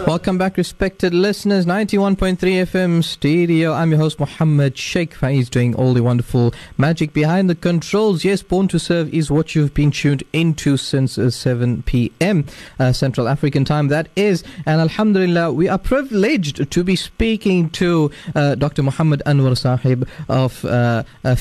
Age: 30-49